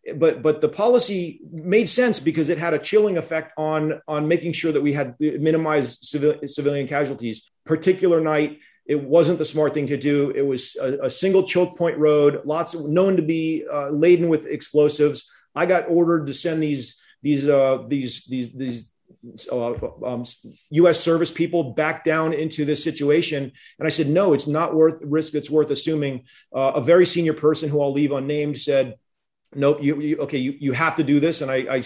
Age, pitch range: 40-59, 135-160 Hz